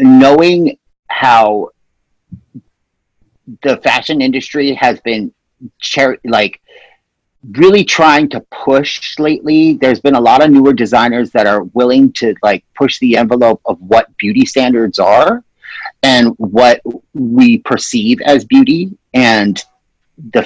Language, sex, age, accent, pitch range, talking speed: English, male, 40-59, American, 120-180 Hz, 125 wpm